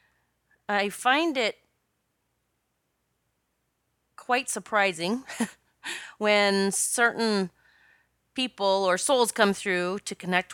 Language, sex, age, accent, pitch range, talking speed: English, female, 30-49, American, 165-225 Hz, 80 wpm